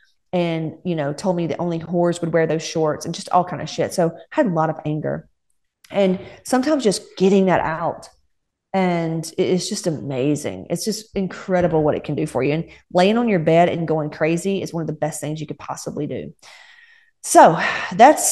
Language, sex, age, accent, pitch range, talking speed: English, female, 30-49, American, 165-200 Hz, 210 wpm